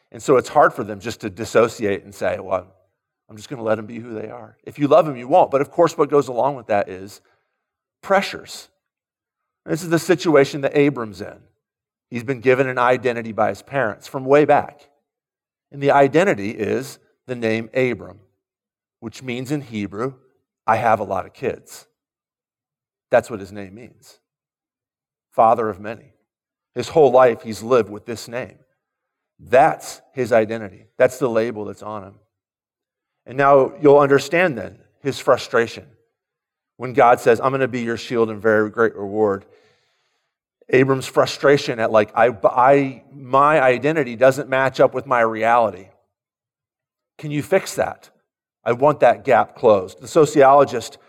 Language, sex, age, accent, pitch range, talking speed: English, male, 40-59, American, 105-135 Hz, 170 wpm